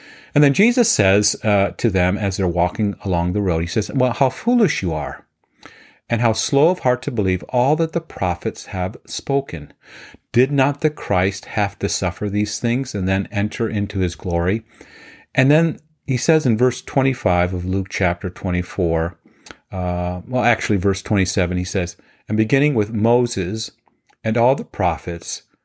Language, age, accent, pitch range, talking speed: English, 40-59, American, 95-125 Hz, 175 wpm